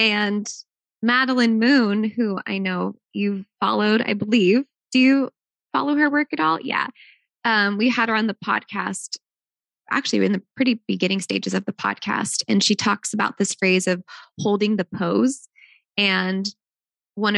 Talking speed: 160 wpm